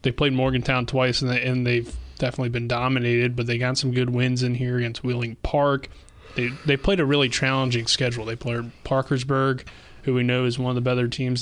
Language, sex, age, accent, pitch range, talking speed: English, male, 20-39, American, 120-135 Hz, 215 wpm